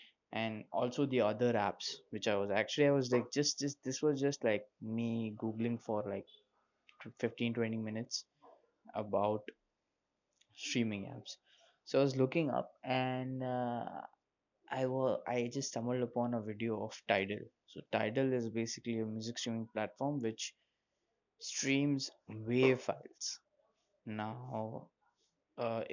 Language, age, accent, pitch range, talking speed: English, 20-39, Indian, 110-130 Hz, 135 wpm